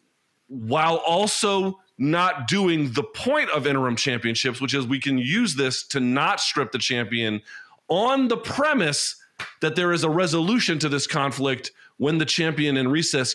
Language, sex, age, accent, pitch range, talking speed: English, male, 30-49, American, 120-175 Hz, 160 wpm